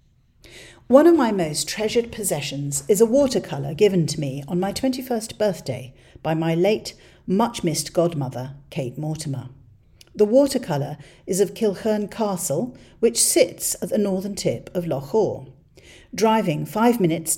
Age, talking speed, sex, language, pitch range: 50-69, 140 wpm, female, English, 145-200 Hz